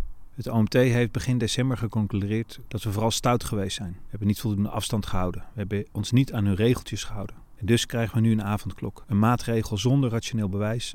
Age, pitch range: 40-59, 100-120 Hz